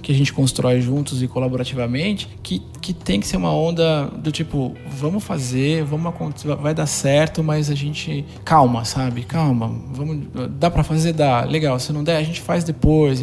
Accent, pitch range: Brazilian, 140-170 Hz